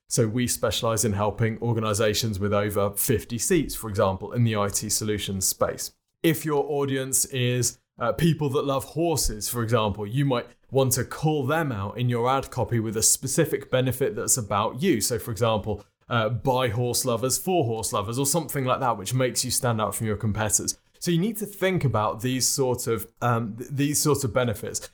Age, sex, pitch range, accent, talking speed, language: 20-39, male, 110-135 Hz, British, 200 wpm, English